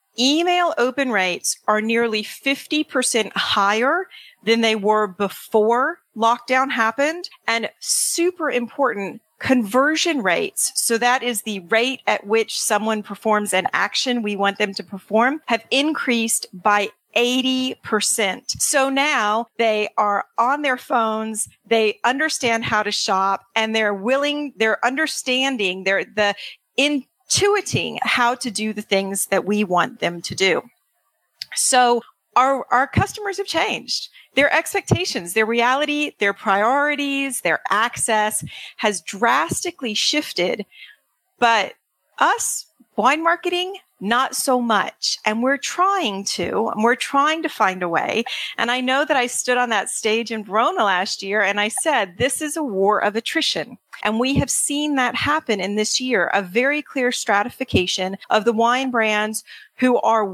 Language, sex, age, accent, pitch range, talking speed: English, female, 40-59, American, 215-275 Hz, 145 wpm